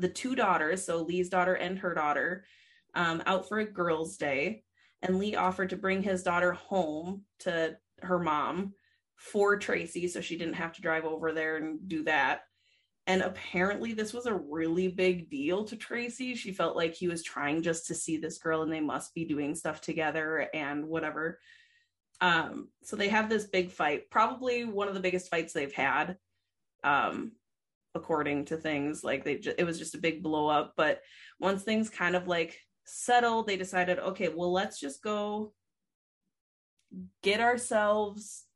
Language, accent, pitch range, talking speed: English, American, 165-215 Hz, 175 wpm